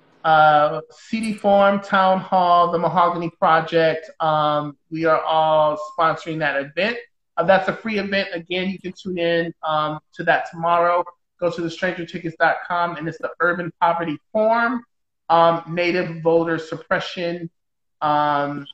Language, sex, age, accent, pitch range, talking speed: English, male, 30-49, American, 155-185 Hz, 145 wpm